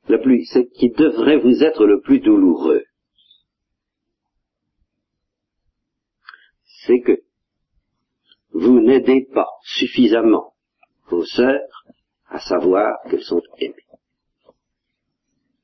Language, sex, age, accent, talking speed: French, male, 50-69, French, 80 wpm